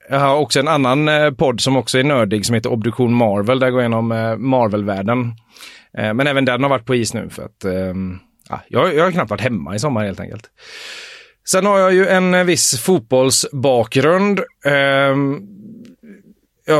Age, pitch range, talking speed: 30-49, 115-150 Hz, 155 wpm